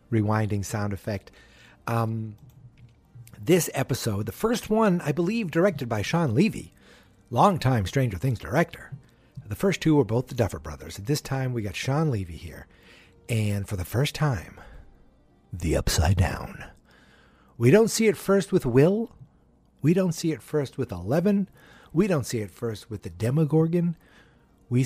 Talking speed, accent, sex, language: 160 wpm, American, male, English